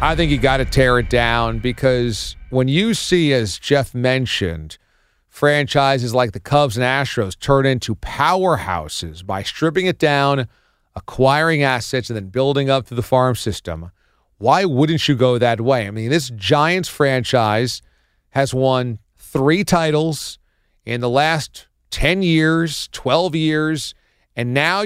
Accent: American